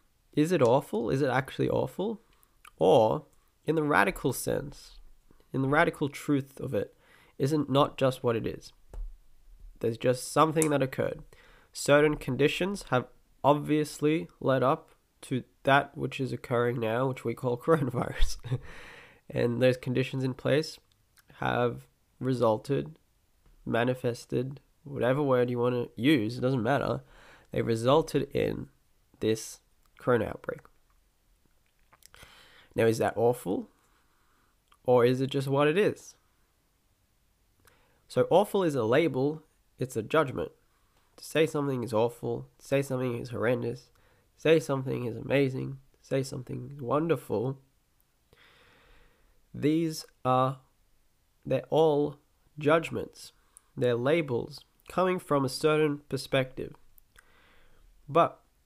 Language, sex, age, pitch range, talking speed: English, male, 20-39, 120-145 Hz, 120 wpm